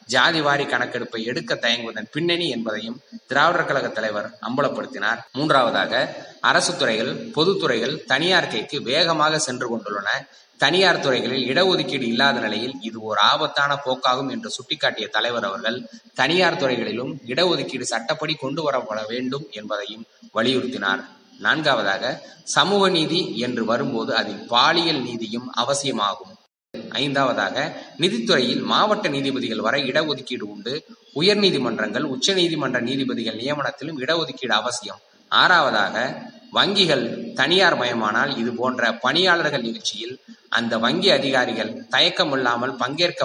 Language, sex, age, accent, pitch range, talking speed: Tamil, male, 20-39, native, 115-155 Hz, 110 wpm